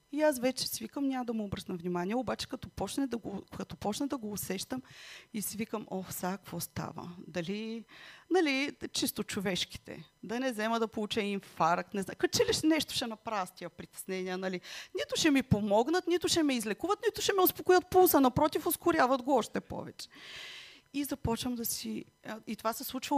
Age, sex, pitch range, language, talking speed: 30-49, female, 190-255 Hz, Bulgarian, 185 wpm